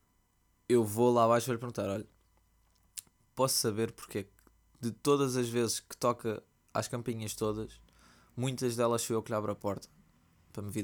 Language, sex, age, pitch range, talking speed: Portuguese, male, 20-39, 100-150 Hz, 175 wpm